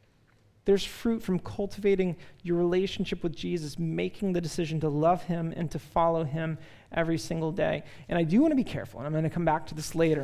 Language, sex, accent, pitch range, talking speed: English, male, American, 150-195 Hz, 215 wpm